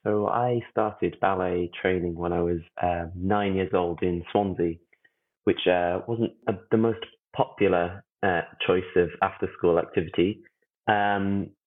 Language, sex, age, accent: English, male, 20-39, British